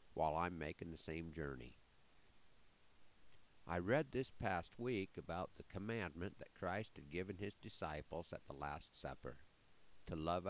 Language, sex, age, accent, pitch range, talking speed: English, male, 50-69, American, 75-100 Hz, 150 wpm